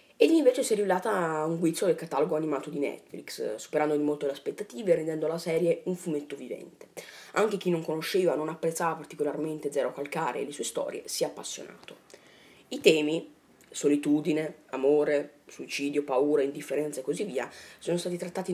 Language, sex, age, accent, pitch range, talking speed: Italian, female, 30-49, native, 150-185 Hz, 175 wpm